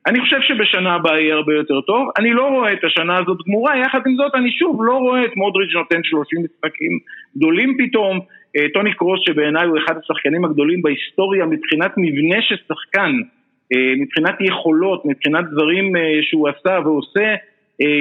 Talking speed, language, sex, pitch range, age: 160 wpm, Hebrew, male, 160-250 Hz, 50-69